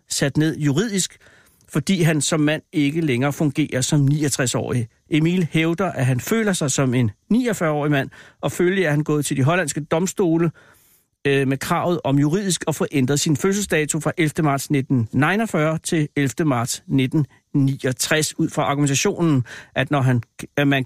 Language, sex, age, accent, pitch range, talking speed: Danish, male, 60-79, native, 135-165 Hz, 155 wpm